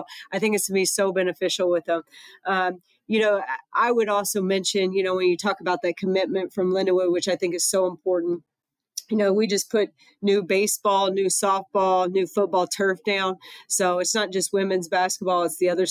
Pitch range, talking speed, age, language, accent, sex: 180-195 Hz, 205 wpm, 40-59, English, American, female